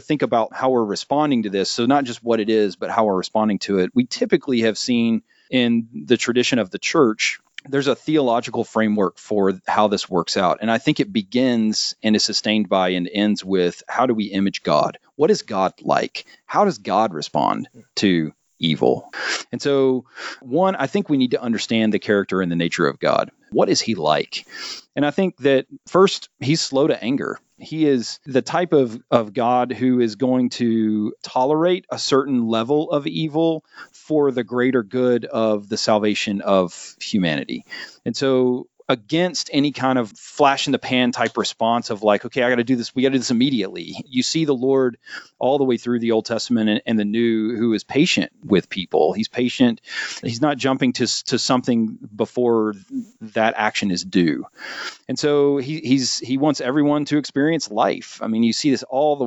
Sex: male